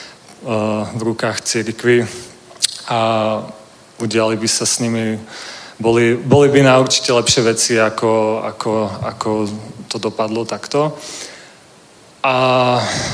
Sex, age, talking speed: male, 30-49, 90 wpm